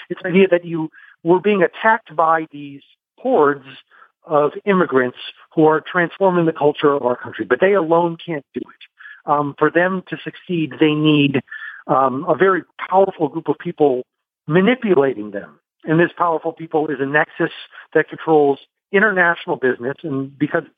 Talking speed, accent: 160 wpm, American